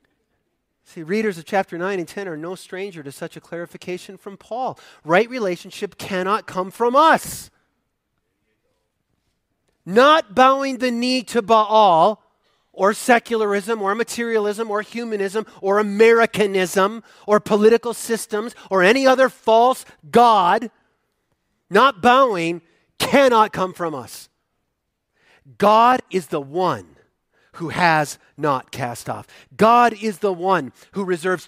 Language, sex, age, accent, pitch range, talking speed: English, male, 40-59, American, 180-235 Hz, 125 wpm